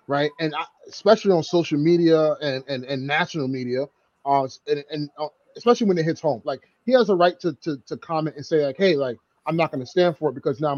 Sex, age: male, 30-49